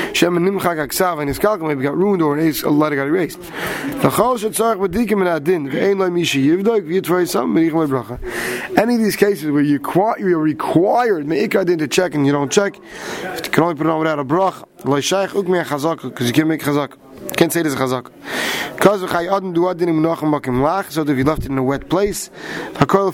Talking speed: 135 wpm